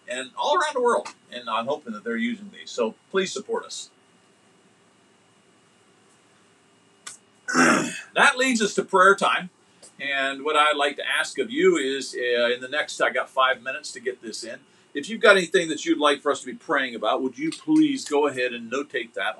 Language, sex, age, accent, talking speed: English, male, 50-69, American, 200 wpm